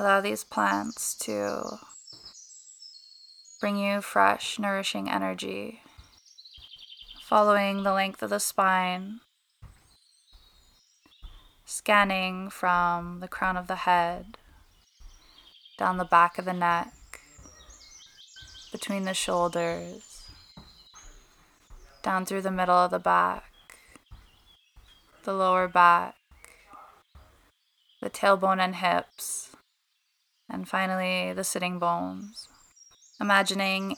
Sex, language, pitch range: female, English, 175-195 Hz